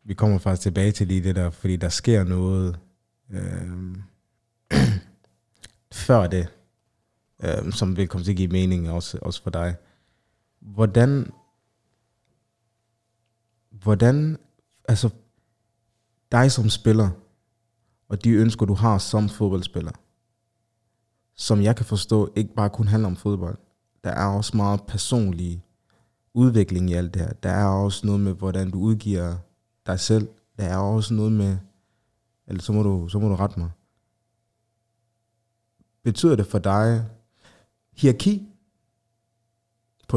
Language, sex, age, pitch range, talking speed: Danish, male, 20-39, 100-115 Hz, 135 wpm